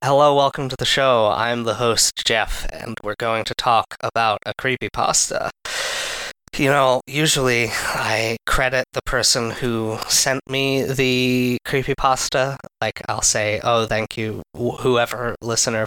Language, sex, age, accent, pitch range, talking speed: English, male, 20-39, American, 115-135 Hz, 140 wpm